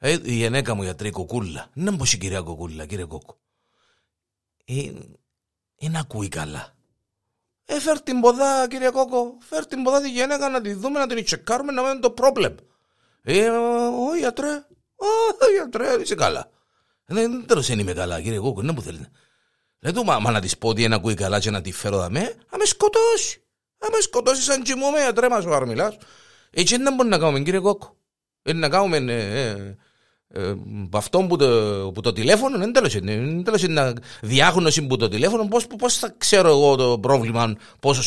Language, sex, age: Greek, male, 50-69